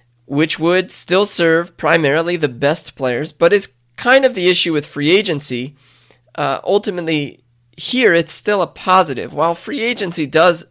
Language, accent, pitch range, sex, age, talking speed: English, American, 135-170 Hz, male, 20-39, 155 wpm